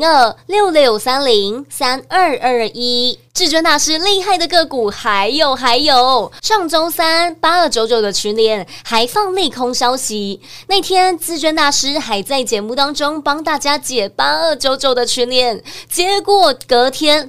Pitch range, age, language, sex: 235-330 Hz, 20-39, Chinese, female